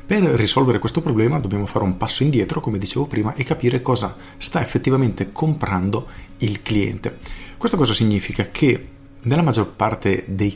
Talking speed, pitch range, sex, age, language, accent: 160 wpm, 100-125 Hz, male, 40-59, Italian, native